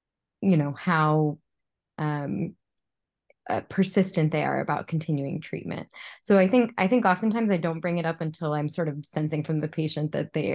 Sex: female